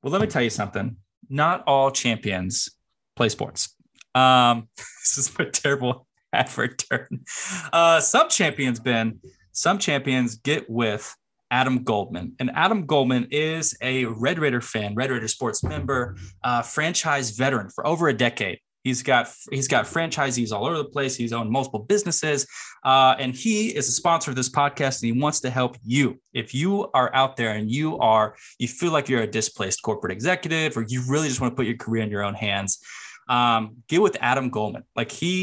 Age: 20-39